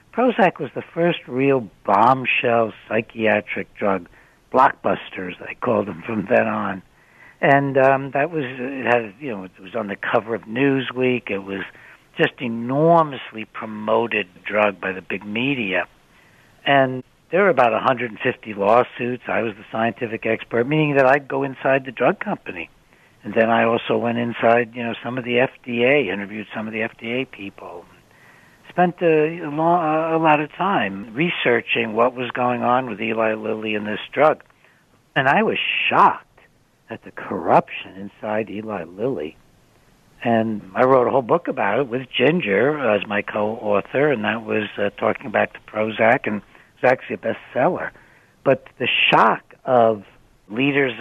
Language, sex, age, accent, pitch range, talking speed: English, male, 60-79, American, 110-130 Hz, 160 wpm